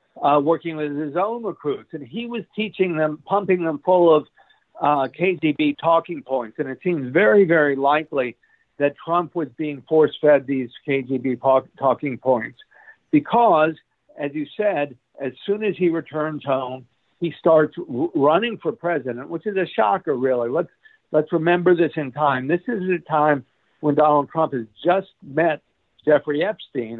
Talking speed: 160 wpm